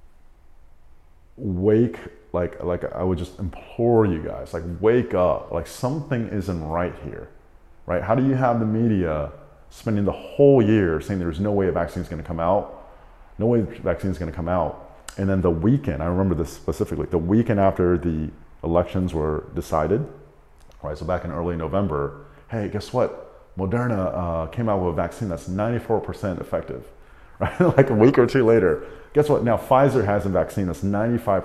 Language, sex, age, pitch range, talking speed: English, male, 30-49, 85-110 Hz, 180 wpm